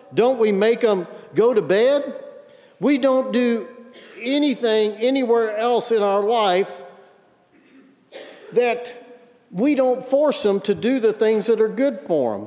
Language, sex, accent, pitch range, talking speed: English, male, American, 175-250 Hz, 145 wpm